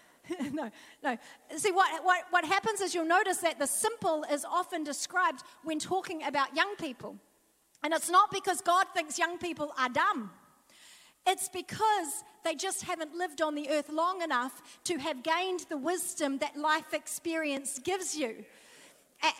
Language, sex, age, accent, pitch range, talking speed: English, female, 40-59, Australian, 285-350 Hz, 165 wpm